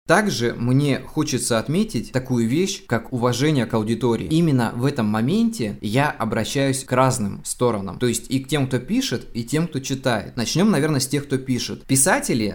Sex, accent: male, native